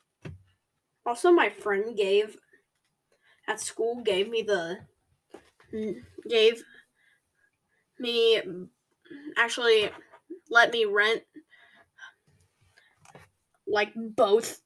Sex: female